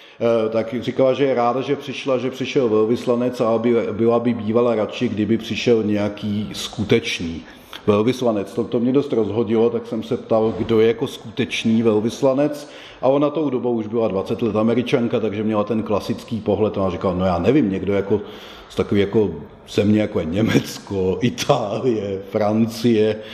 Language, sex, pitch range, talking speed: Czech, male, 105-120 Hz, 165 wpm